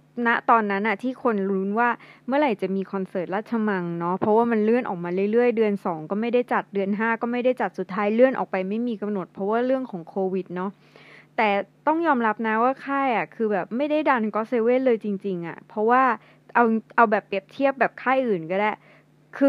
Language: Thai